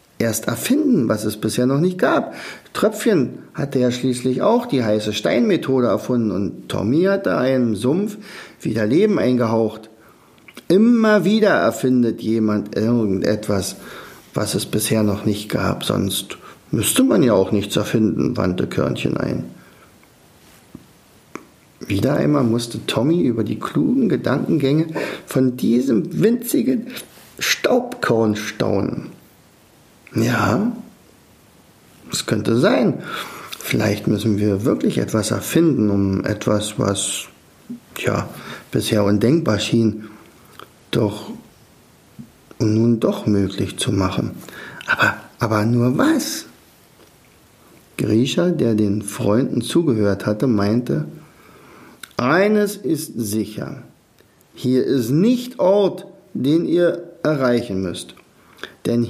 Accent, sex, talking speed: German, male, 105 wpm